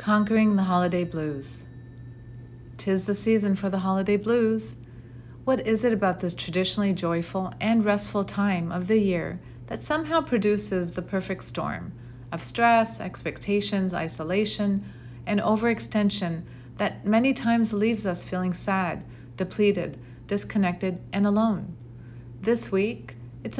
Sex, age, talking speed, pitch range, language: female, 40-59, 125 wpm, 135-210 Hz, English